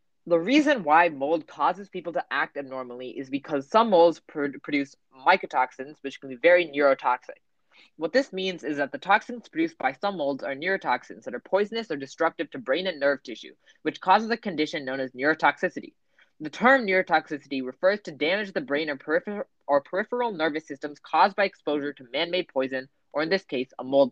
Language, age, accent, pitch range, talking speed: English, 20-39, American, 145-210 Hz, 190 wpm